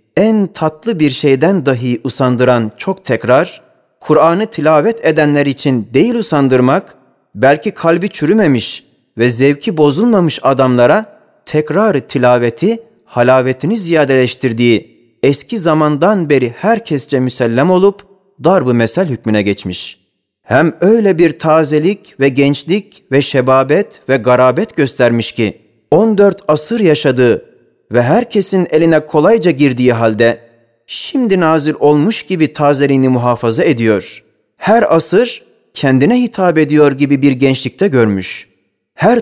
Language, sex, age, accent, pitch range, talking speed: Turkish, male, 40-59, native, 130-180 Hz, 110 wpm